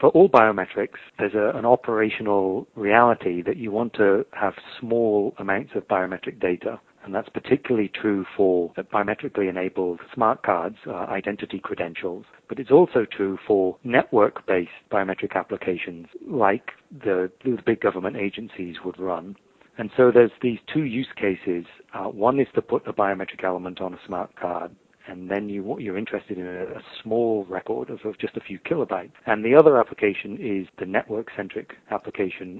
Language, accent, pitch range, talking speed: English, British, 90-105 Hz, 155 wpm